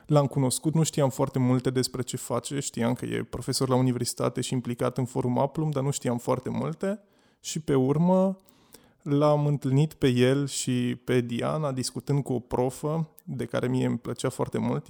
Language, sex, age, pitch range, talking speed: Romanian, male, 20-39, 125-145 Hz, 185 wpm